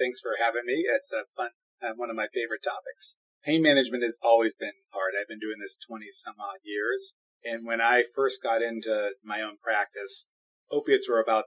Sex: male